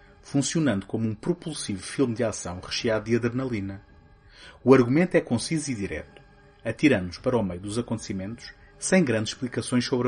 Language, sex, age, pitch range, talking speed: Portuguese, male, 30-49, 100-135 Hz, 155 wpm